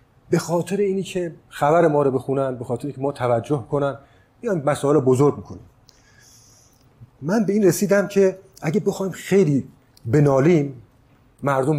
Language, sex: Persian, male